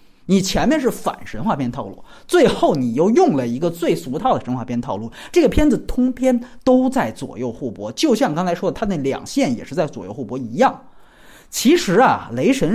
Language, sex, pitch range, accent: Chinese, male, 220-280 Hz, native